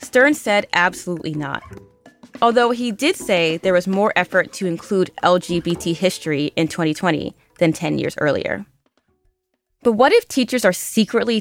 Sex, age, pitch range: female, 20-39, 165-220 Hz